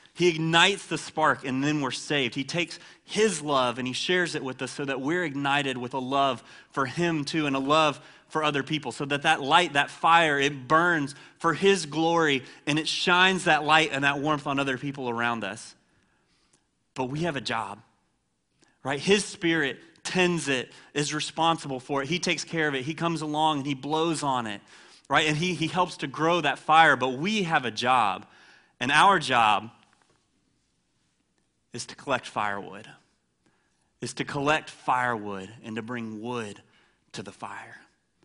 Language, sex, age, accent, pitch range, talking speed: English, male, 30-49, American, 135-170 Hz, 185 wpm